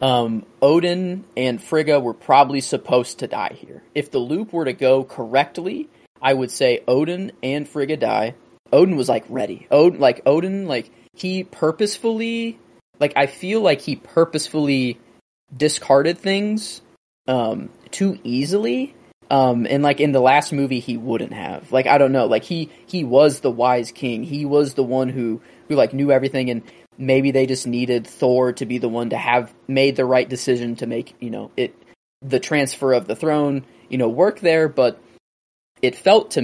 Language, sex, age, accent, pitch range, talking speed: English, male, 20-39, American, 120-150 Hz, 175 wpm